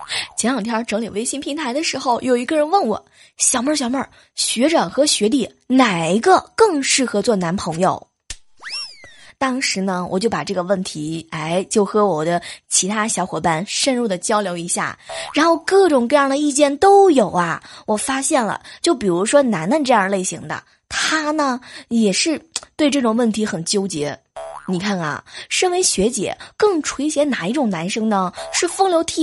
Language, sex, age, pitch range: Chinese, female, 20-39, 190-290 Hz